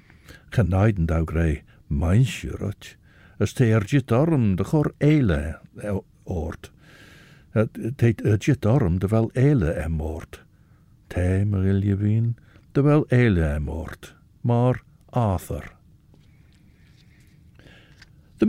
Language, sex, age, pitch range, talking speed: English, male, 60-79, 90-130 Hz, 105 wpm